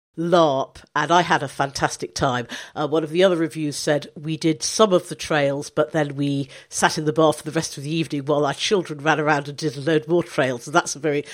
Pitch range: 150-205 Hz